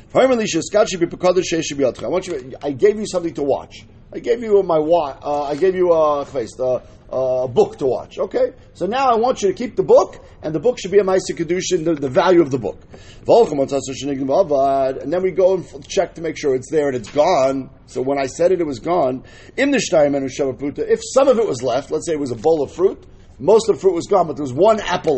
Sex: male